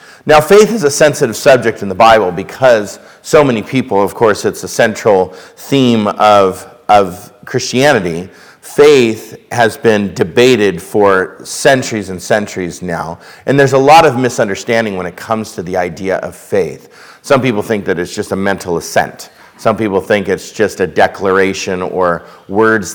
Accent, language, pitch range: American, English, 95-125 Hz